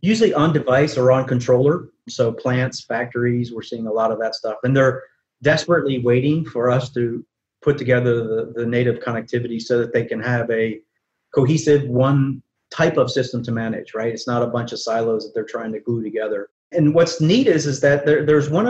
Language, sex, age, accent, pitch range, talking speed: English, male, 30-49, American, 120-150 Hz, 205 wpm